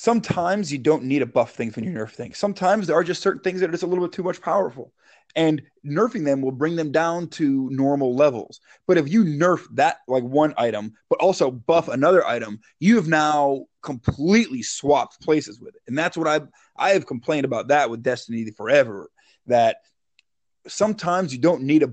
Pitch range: 130-180 Hz